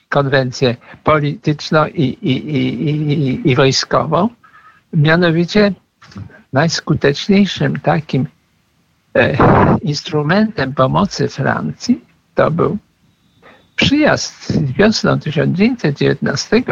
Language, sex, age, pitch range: Polish, male, 60-79, 140-200 Hz